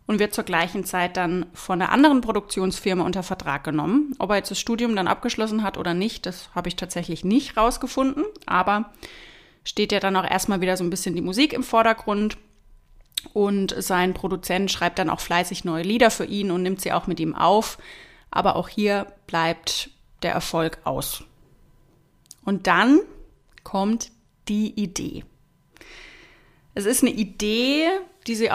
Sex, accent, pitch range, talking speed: female, German, 185-235 Hz, 165 wpm